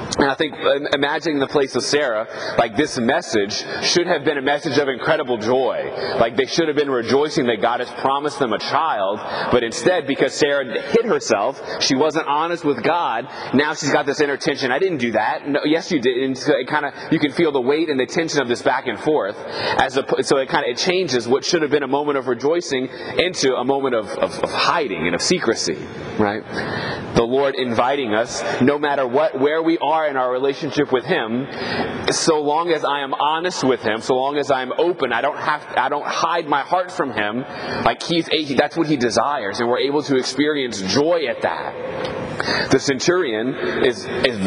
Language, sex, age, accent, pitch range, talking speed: English, male, 30-49, American, 130-180 Hz, 215 wpm